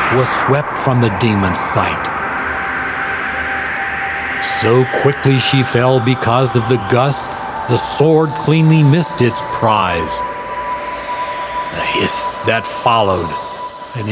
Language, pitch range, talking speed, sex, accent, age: English, 100-145 Hz, 105 wpm, male, American, 50-69